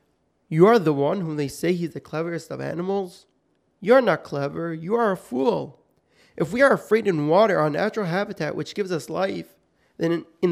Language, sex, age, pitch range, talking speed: English, male, 30-49, 155-200 Hz, 200 wpm